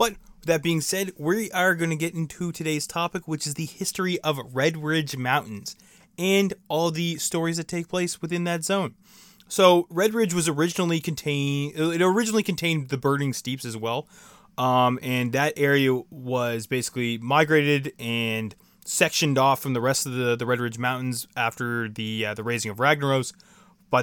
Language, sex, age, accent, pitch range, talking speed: English, male, 20-39, American, 125-180 Hz, 180 wpm